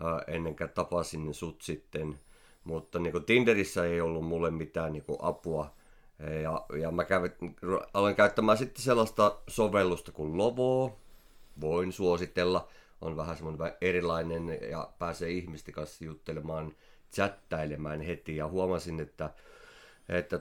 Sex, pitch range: male, 80-100 Hz